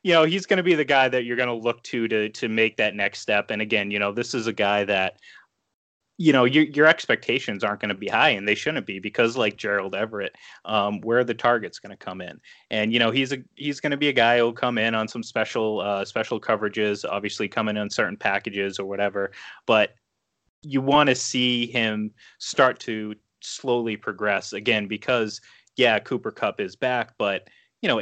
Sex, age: male, 30-49